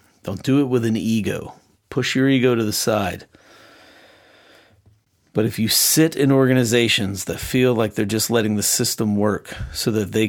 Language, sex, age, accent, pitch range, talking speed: English, male, 40-59, American, 100-115 Hz, 175 wpm